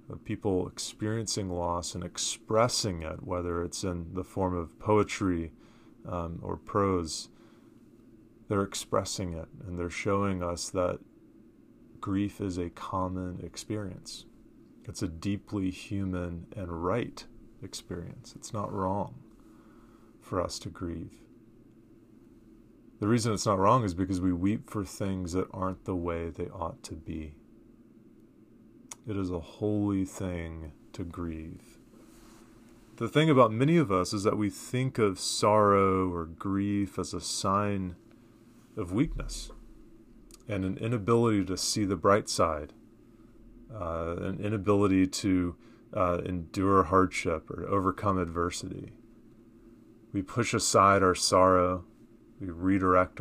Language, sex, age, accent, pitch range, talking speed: English, male, 30-49, American, 90-110 Hz, 130 wpm